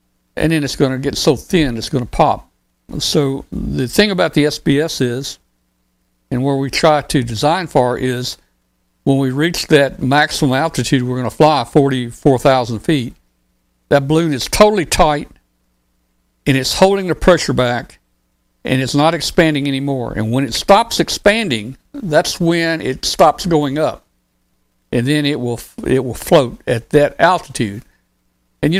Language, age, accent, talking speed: English, 60-79, American, 160 wpm